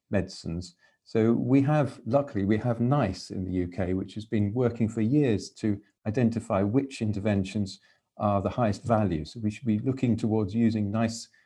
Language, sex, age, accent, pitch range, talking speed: English, male, 40-59, British, 100-120 Hz, 175 wpm